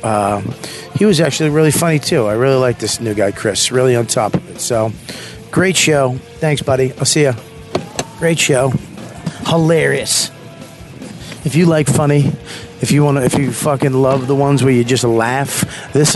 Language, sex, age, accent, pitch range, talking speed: English, male, 40-59, American, 115-145 Hz, 180 wpm